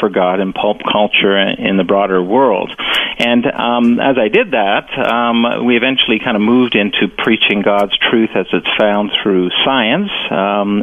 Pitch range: 100-130 Hz